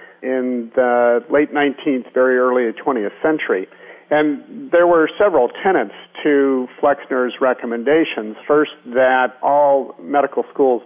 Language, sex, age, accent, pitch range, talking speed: English, male, 50-69, American, 125-155 Hz, 115 wpm